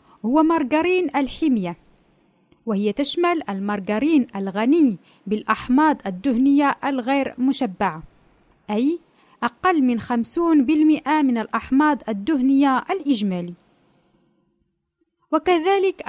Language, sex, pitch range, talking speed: Arabic, female, 225-300 Hz, 80 wpm